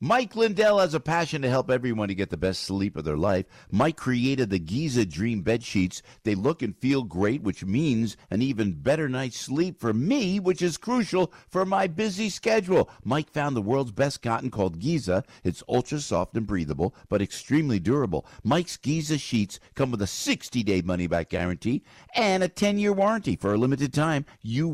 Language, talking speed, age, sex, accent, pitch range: English, 190 wpm, 50-69, male, American, 110-150 Hz